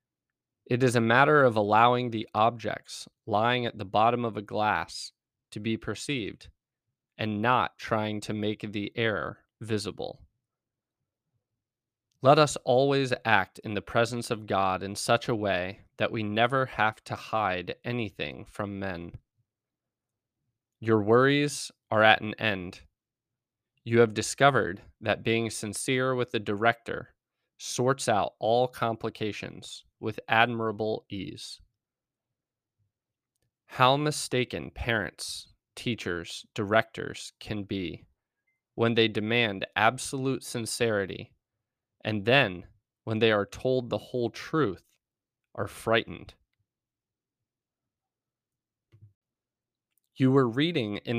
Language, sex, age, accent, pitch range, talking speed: English, male, 20-39, American, 105-125 Hz, 115 wpm